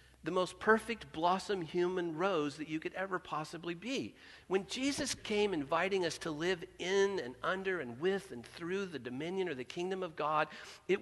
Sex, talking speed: male, 185 wpm